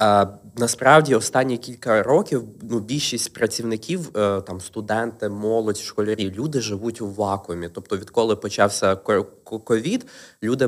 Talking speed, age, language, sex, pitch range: 110 wpm, 20-39, Ukrainian, male, 105-125 Hz